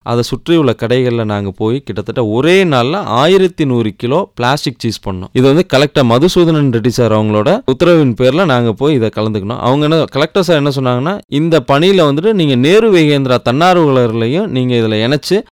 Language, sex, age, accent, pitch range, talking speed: English, male, 30-49, Indian, 115-155 Hz, 175 wpm